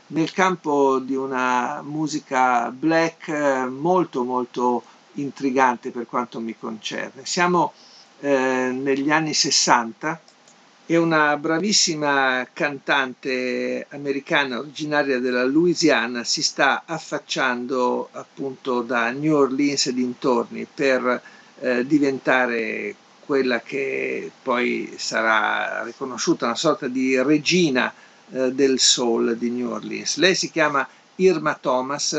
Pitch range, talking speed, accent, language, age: 125-145 Hz, 105 wpm, native, Italian, 50-69